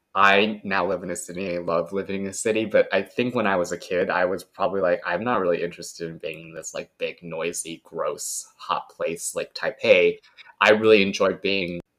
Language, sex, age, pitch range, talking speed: English, male, 20-39, 90-145 Hz, 220 wpm